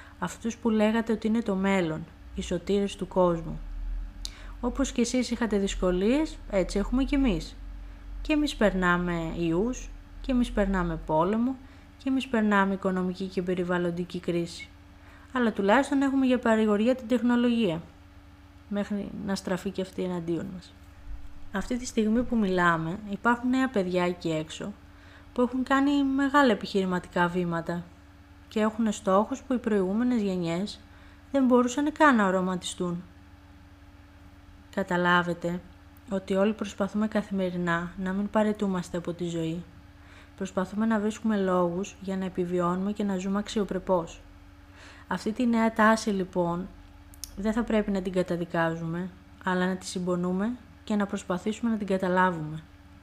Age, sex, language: 20-39, female, Greek